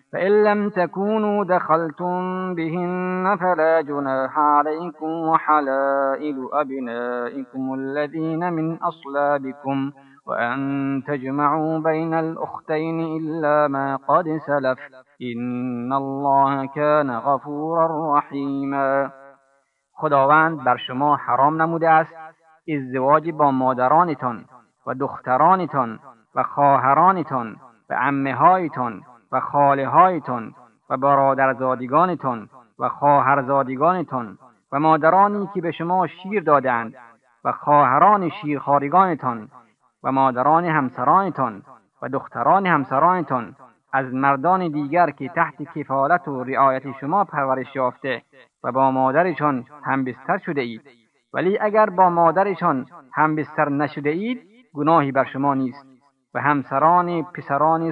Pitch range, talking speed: 135-165 Hz, 100 wpm